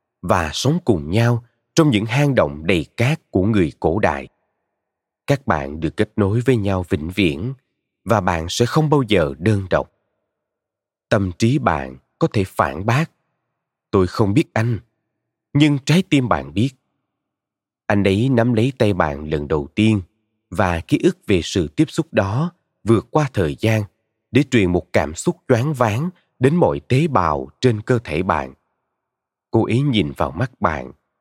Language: Vietnamese